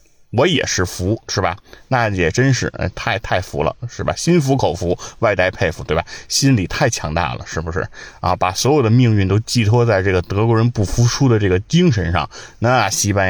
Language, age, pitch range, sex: Chinese, 20-39, 90-120 Hz, male